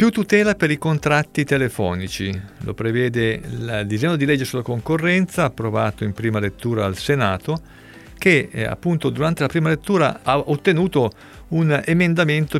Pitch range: 115-155 Hz